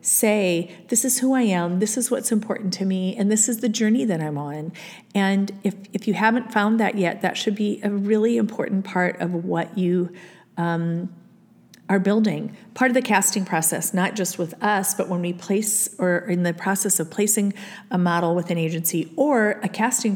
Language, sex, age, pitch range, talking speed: English, female, 40-59, 175-215 Hz, 200 wpm